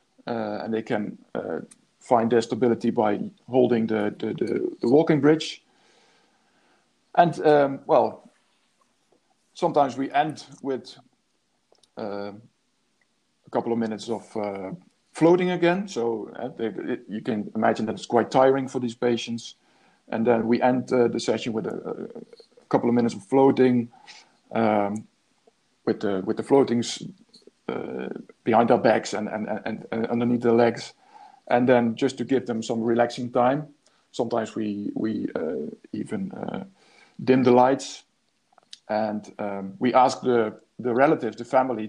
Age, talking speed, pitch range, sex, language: 50-69, 150 wpm, 115-130 Hz, male, Spanish